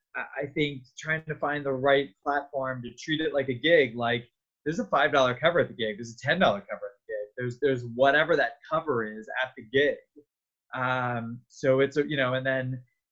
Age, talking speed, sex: 20-39, 205 wpm, male